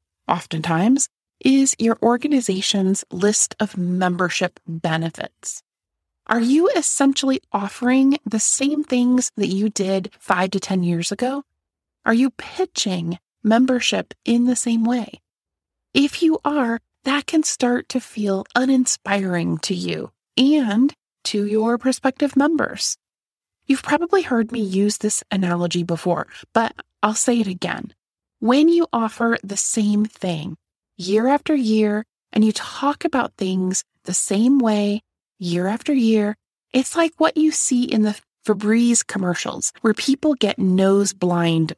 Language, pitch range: English, 195-270 Hz